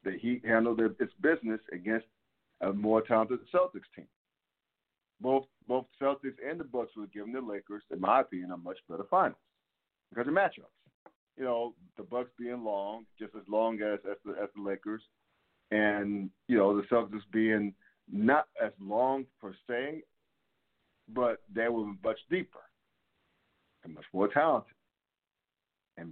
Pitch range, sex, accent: 105-130 Hz, male, American